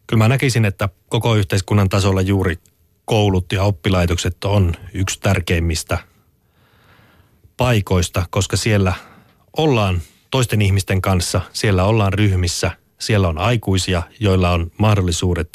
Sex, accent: male, native